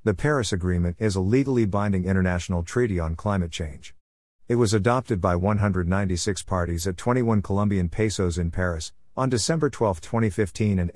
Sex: male